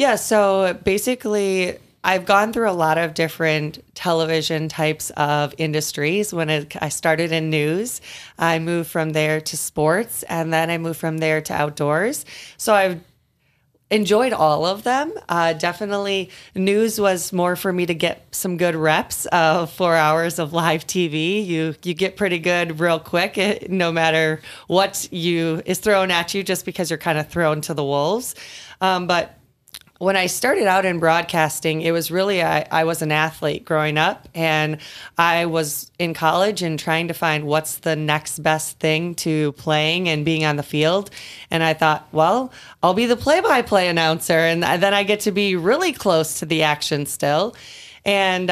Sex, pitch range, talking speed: female, 160-195 Hz, 180 wpm